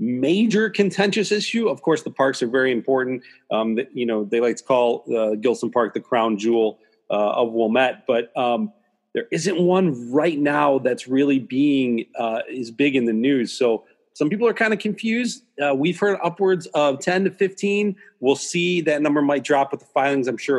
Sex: male